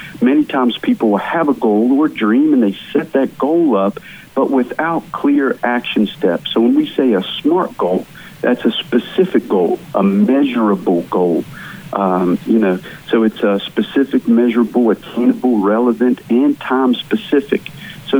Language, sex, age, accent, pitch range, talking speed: English, male, 50-69, American, 115-175 Hz, 150 wpm